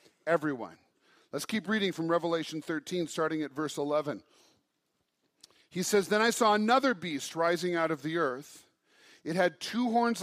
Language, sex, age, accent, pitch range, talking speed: English, male, 40-59, American, 165-215 Hz, 160 wpm